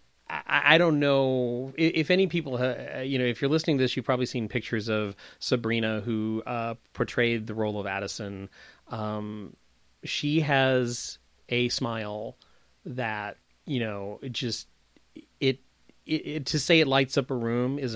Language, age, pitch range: English, 30-49, 110-145 Hz